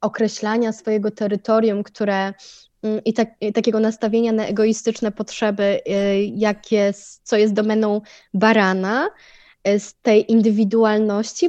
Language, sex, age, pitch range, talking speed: Polish, female, 20-39, 200-235 Hz, 110 wpm